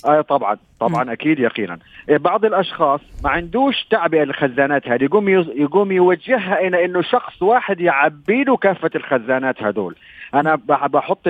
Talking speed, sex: 140 wpm, male